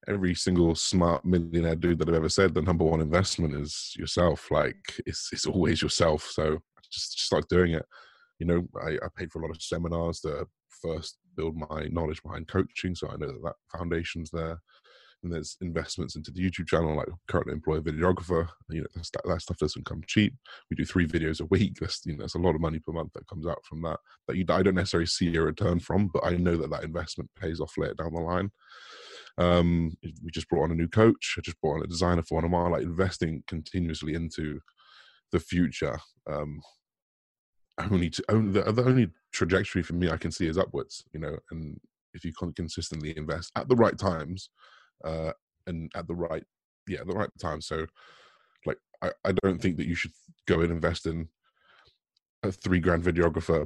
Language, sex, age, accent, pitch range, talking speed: English, male, 20-39, British, 80-90 Hz, 210 wpm